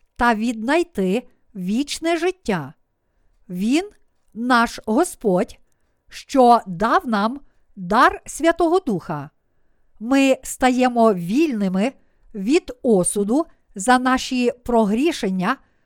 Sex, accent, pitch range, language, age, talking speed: female, native, 215-295 Hz, Ukrainian, 50-69, 85 wpm